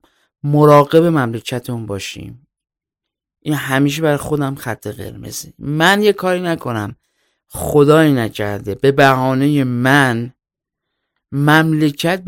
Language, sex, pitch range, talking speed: Persian, male, 125-165 Hz, 95 wpm